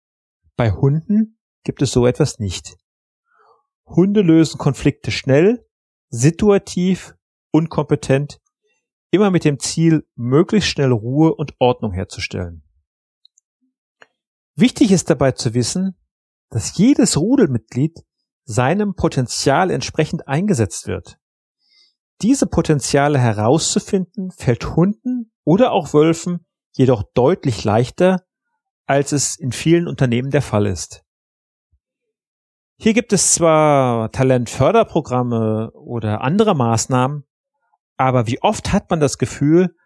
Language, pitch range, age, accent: German, 125-185 Hz, 40-59, German